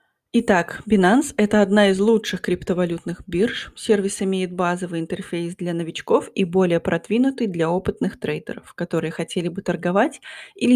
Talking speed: 140 wpm